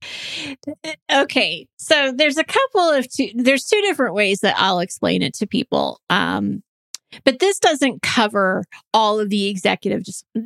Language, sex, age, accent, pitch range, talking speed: English, female, 30-49, American, 205-250 Hz, 155 wpm